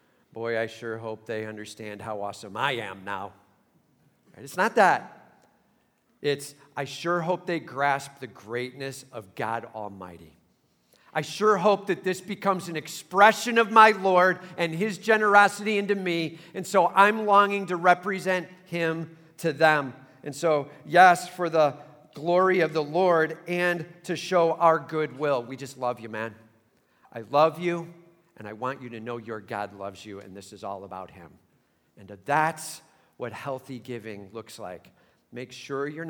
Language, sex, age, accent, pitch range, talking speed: English, male, 50-69, American, 110-170 Hz, 165 wpm